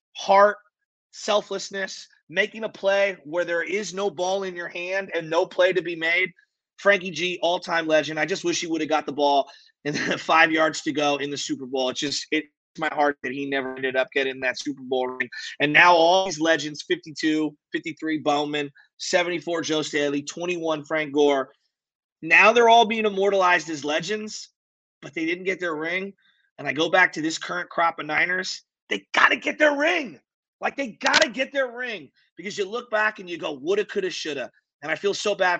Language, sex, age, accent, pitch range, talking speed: English, male, 30-49, American, 145-190 Hz, 205 wpm